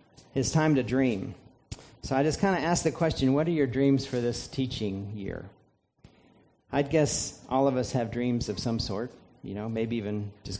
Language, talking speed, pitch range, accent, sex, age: English, 200 wpm, 120-145 Hz, American, male, 40-59